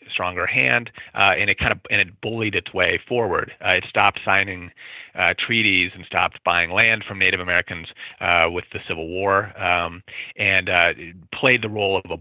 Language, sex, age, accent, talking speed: English, male, 30-49, American, 190 wpm